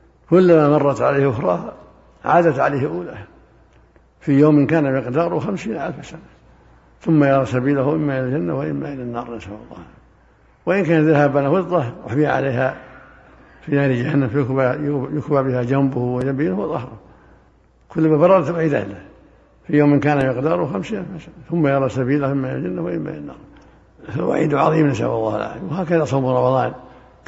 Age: 60-79